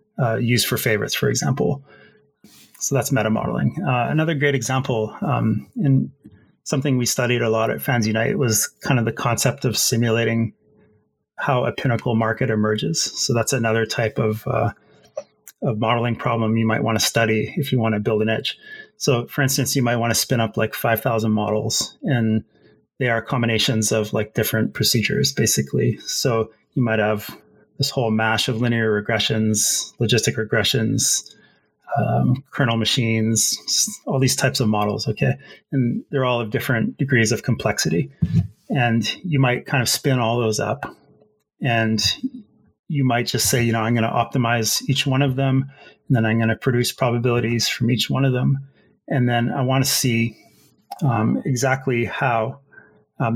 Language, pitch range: English, 110-135 Hz